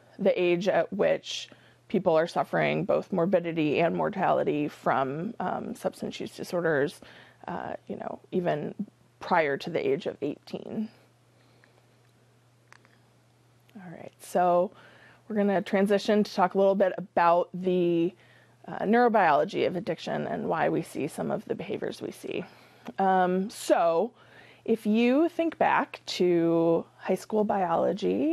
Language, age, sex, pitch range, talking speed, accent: English, 20-39, female, 175-215 Hz, 135 wpm, American